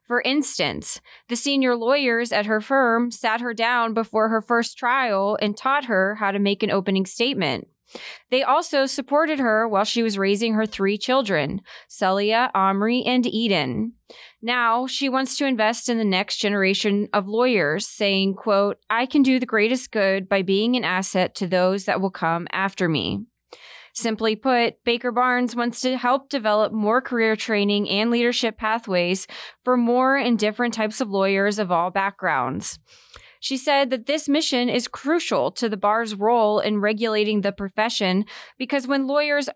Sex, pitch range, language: female, 200-245 Hz, English